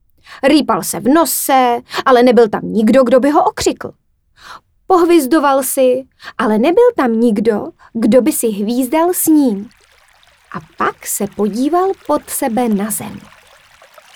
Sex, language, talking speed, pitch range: female, Czech, 135 wpm, 215-295 Hz